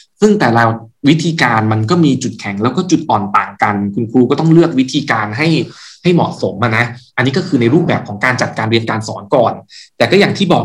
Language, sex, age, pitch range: Thai, male, 20-39, 110-155 Hz